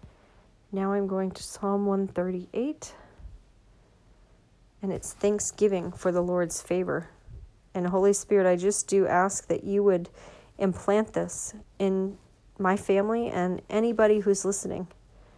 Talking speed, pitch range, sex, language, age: 125 wpm, 185-225 Hz, female, English, 40-59